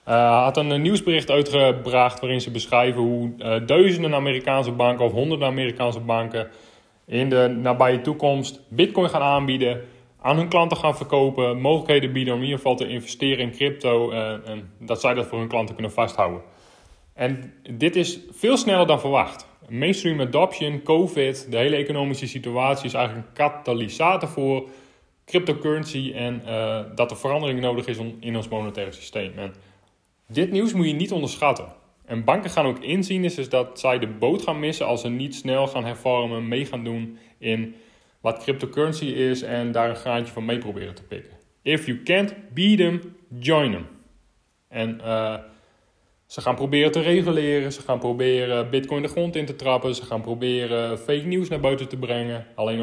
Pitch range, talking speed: 115-145 Hz, 175 wpm